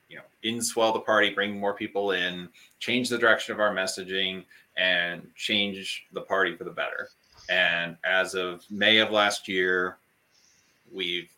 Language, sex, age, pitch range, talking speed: English, male, 30-49, 90-105 Hz, 160 wpm